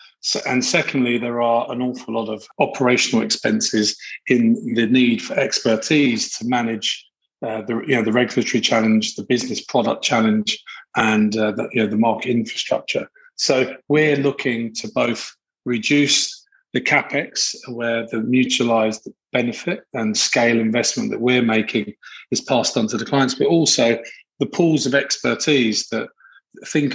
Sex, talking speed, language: male, 145 wpm, English